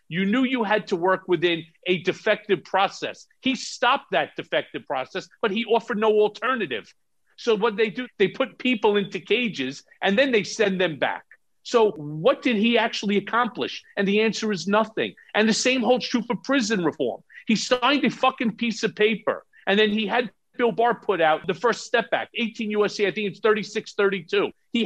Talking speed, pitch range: 195 wpm, 190-235 Hz